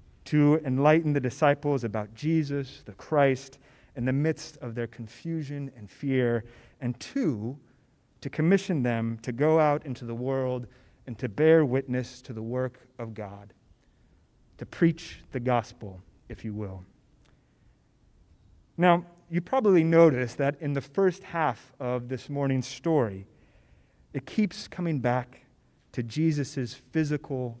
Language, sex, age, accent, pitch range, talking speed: English, male, 30-49, American, 115-150 Hz, 135 wpm